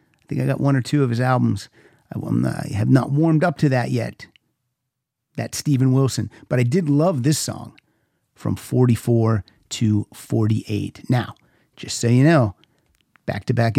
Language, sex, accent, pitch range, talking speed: English, male, American, 110-135 Hz, 175 wpm